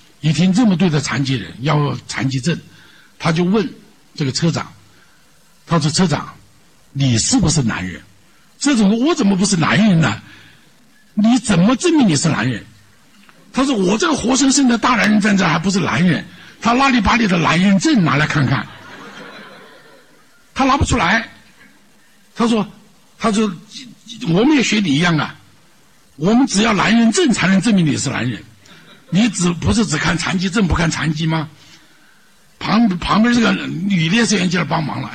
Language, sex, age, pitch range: Chinese, male, 60-79, 155-220 Hz